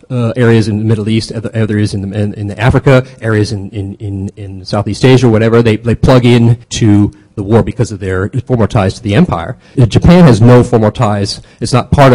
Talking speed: 225 wpm